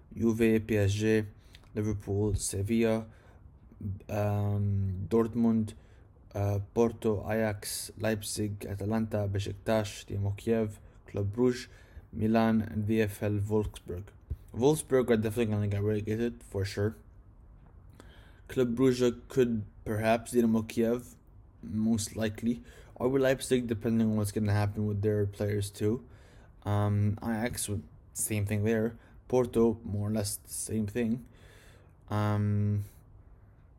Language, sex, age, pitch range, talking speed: English, male, 20-39, 100-115 Hz, 110 wpm